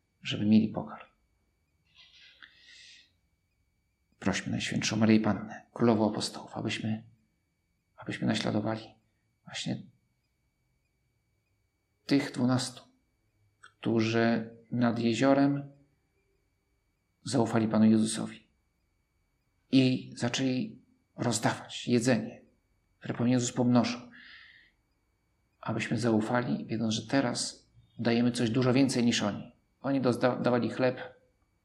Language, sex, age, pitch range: Polish, male, 50-69, 105-125 Hz